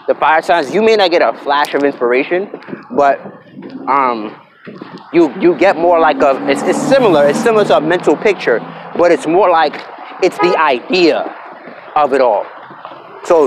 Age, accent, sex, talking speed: 30-49, American, male, 175 wpm